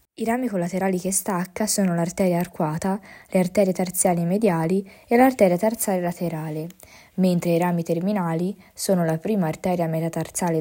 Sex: female